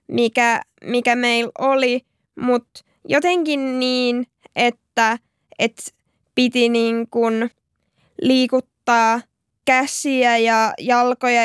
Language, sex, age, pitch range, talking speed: Finnish, female, 20-39, 235-270 Hz, 80 wpm